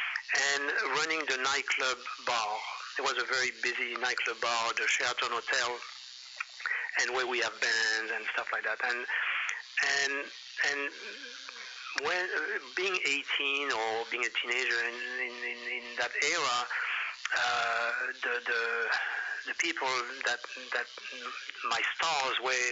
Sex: male